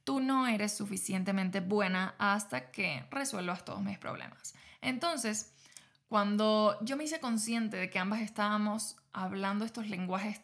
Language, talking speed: Spanish, 140 wpm